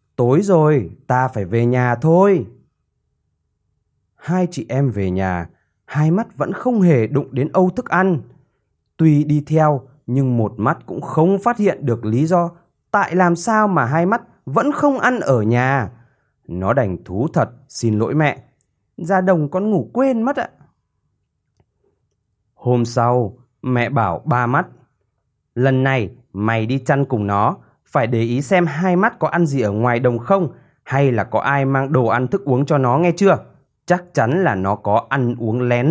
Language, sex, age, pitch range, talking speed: Vietnamese, male, 20-39, 120-170 Hz, 180 wpm